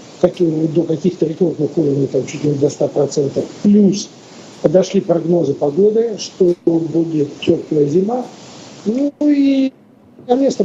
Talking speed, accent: 105 wpm, native